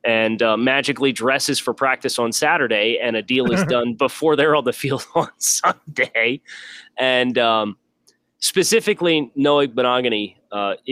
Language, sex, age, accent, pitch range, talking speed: English, male, 30-49, American, 115-140 Hz, 145 wpm